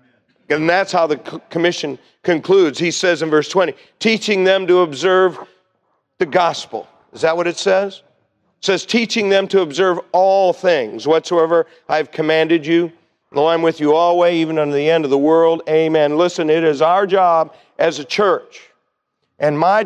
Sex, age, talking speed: male, 50-69, 180 wpm